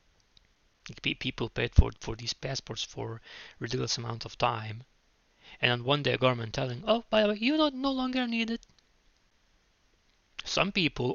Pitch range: 110-135 Hz